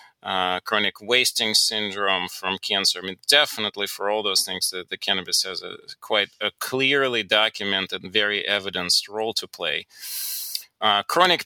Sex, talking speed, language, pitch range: male, 150 wpm, English, 95-115 Hz